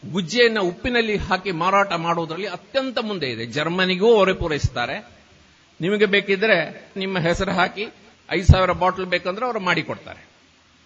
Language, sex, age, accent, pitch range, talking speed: Kannada, male, 50-69, native, 165-215 Hz, 120 wpm